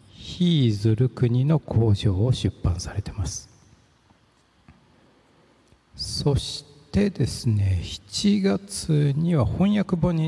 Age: 60-79